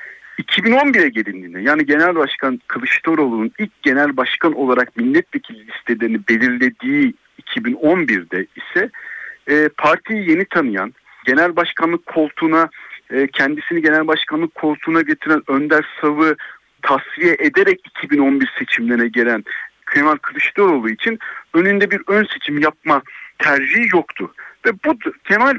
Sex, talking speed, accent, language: male, 115 wpm, native, Turkish